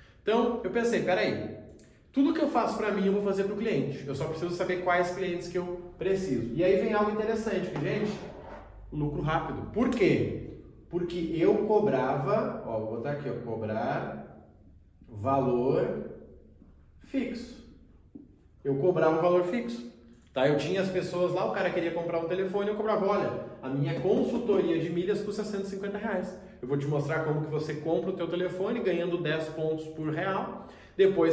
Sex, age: male, 20-39